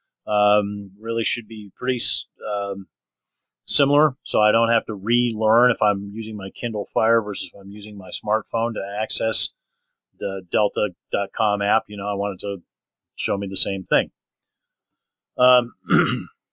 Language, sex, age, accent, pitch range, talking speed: English, male, 40-59, American, 105-125 Hz, 155 wpm